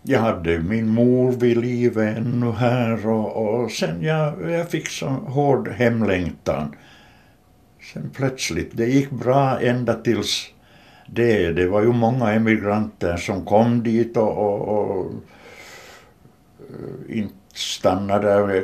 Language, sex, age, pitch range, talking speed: Swedish, male, 60-79, 90-115 Hz, 120 wpm